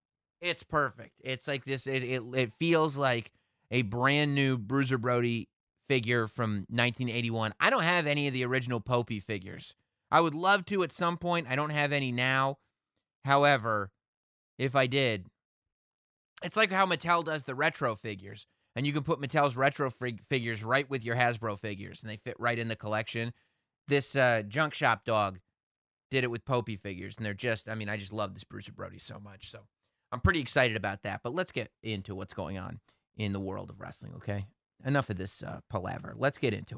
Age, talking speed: 30-49, 195 wpm